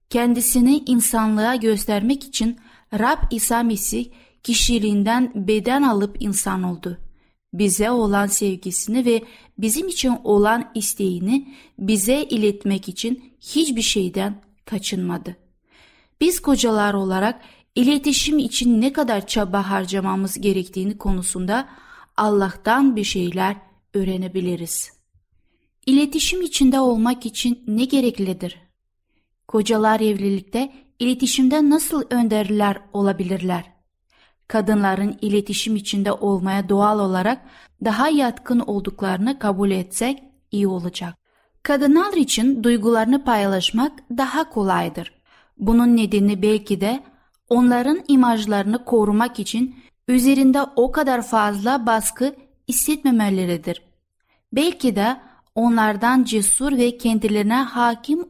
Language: Turkish